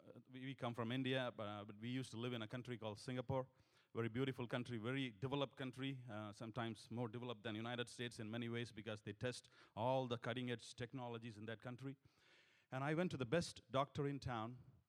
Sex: male